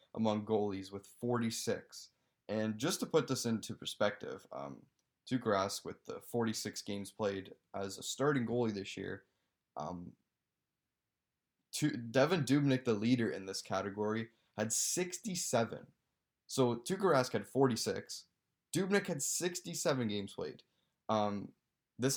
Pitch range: 100-120 Hz